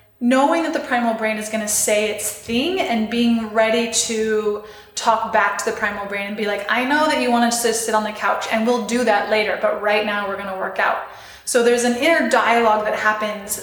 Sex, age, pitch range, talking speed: female, 20-39, 215-245 Hz, 225 wpm